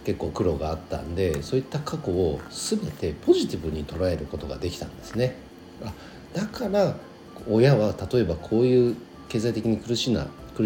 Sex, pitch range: male, 80-125 Hz